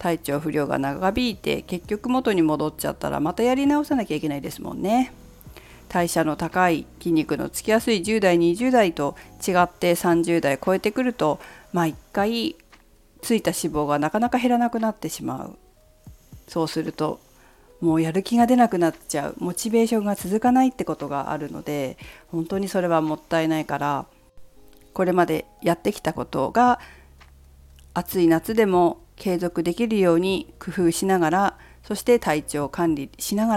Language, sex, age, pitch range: Japanese, female, 40-59, 155-210 Hz